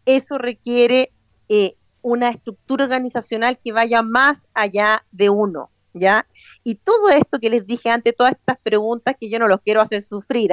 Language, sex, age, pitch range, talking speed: Spanish, female, 40-59, 210-275 Hz, 170 wpm